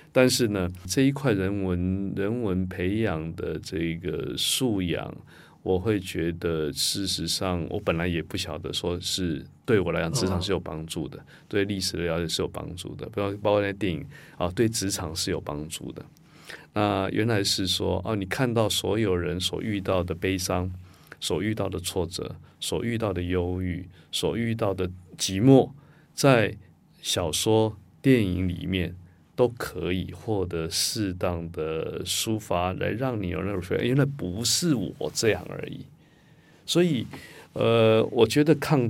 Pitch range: 90-115 Hz